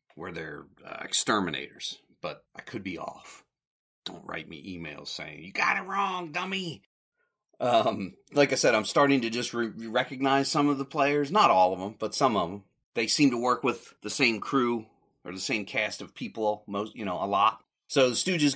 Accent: American